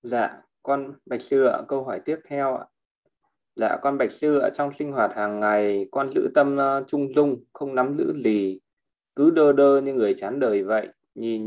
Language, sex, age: Vietnamese, male, 20-39